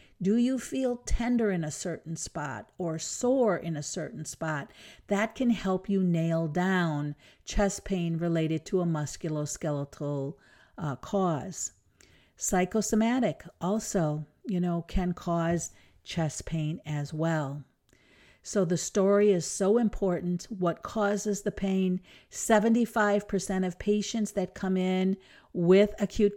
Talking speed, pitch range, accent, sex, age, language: 125 wpm, 170-210 Hz, American, female, 50-69, English